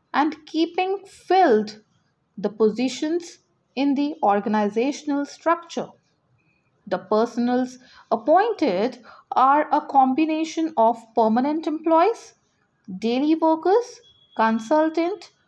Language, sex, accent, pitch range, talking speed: English, female, Indian, 220-315 Hz, 80 wpm